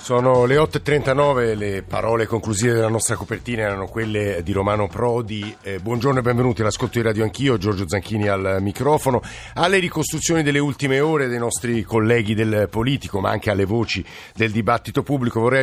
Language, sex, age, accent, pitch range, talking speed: Italian, male, 50-69, native, 110-135 Hz, 170 wpm